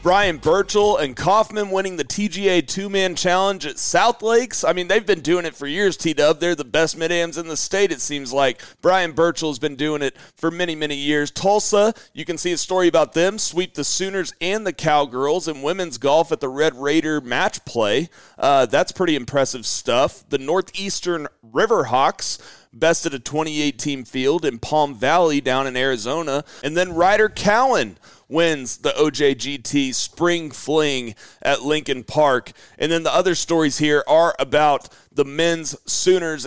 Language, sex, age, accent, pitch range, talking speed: English, male, 40-59, American, 140-180 Hz, 175 wpm